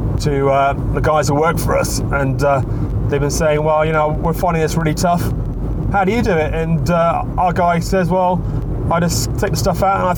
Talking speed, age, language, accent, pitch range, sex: 235 wpm, 30-49, English, British, 125-175 Hz, male